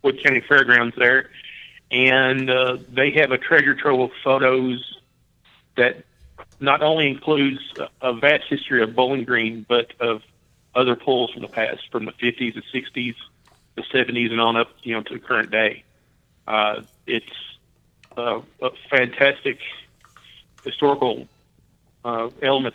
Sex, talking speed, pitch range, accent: male, 140 wpm, 115-130 Hz, American